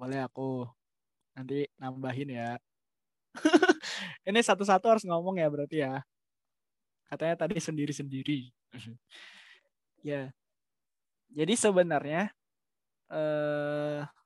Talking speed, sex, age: 80 wpm, male, 20-39